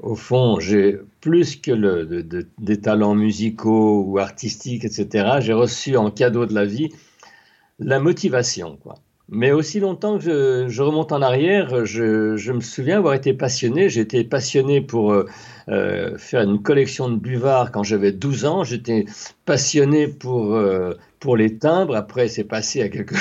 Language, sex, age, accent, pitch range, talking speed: French, male, 60-79, French, 110-150 Hz, 170 wpm